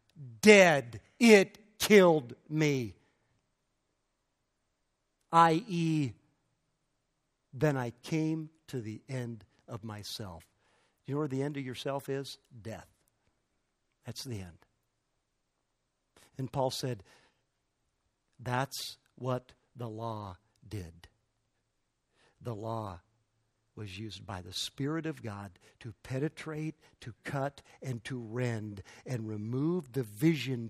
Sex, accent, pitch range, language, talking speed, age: male, American, 110-150 Hz, English, 105 wpm, 60-79